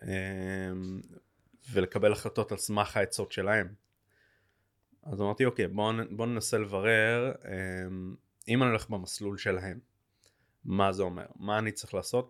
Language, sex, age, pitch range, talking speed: Hebrew, male, 30-49, 95-115 Hz, 135 wpm